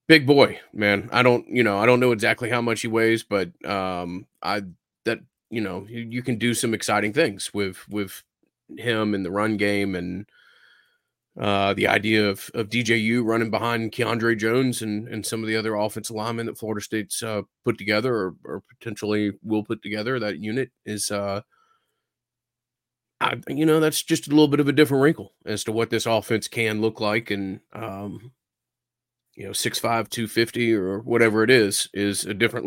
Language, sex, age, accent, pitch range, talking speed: English, male, 30-49, American, 100-120 Hz, 190 wpm